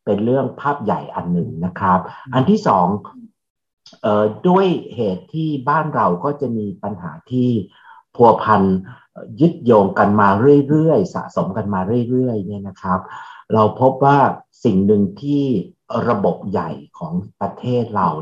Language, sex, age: Thai, male, 60-79